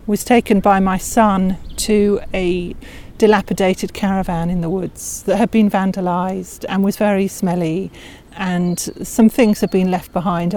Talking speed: 155 wpm